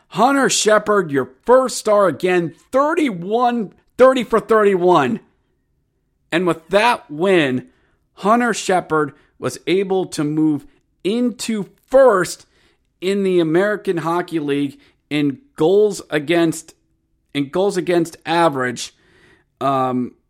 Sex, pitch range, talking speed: male, 130-175 Hz, 105 wpm